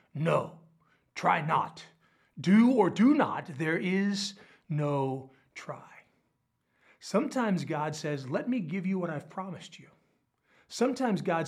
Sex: male